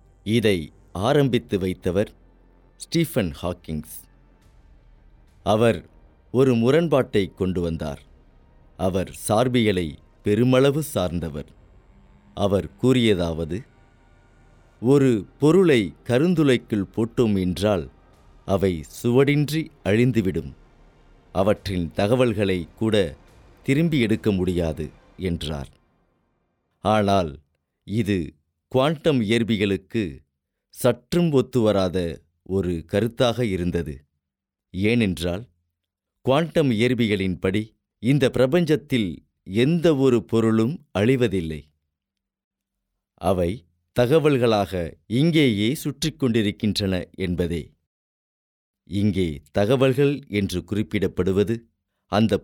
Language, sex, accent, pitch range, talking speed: Tamil, male, native, 85-125 Hz, 65 wpm